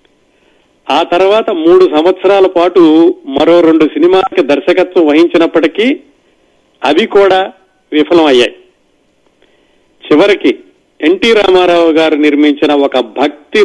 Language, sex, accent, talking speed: Telugu, male, native, 90 wpm